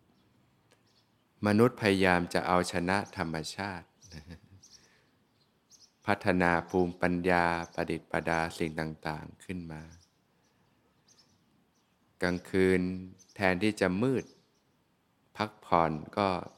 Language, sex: Thai, male